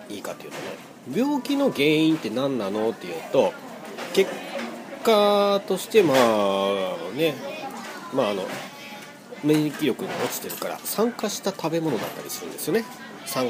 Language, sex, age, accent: Japanese, male, 40-59, native